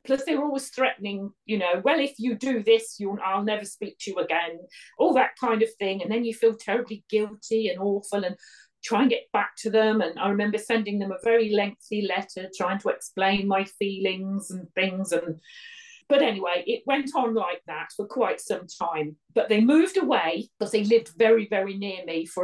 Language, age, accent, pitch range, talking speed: English, 40-59, British, 185-230 Hz, 210 wpm